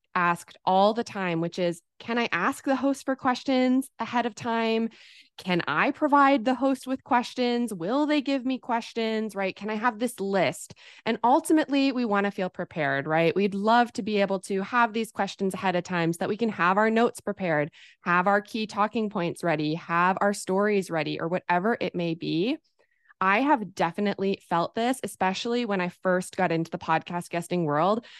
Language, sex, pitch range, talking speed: English, female, 180-240 Hz, 195 wpm